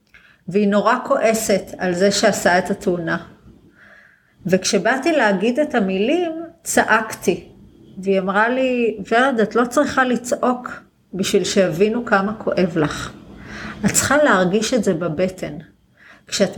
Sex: female